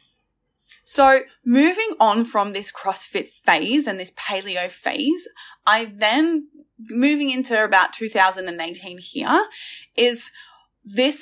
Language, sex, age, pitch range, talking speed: English, female, 10-29, 190-275 Hz, 105 wpm